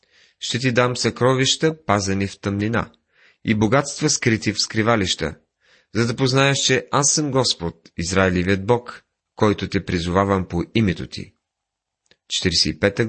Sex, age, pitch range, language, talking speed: male, 30-49, 95-125 Hz, Bulgarian, 130 wpm